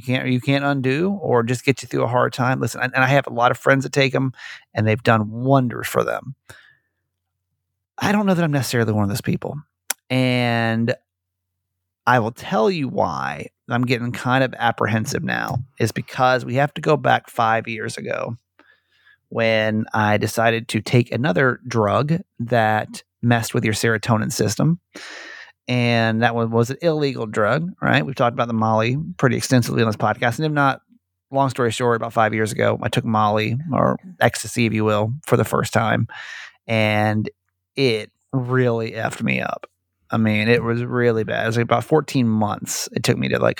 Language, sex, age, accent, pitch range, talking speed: English, male, 30-49, American, 110-130 Hz, 190 wpm